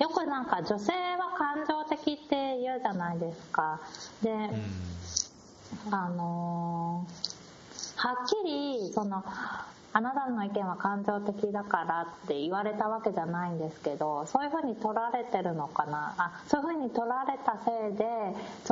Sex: female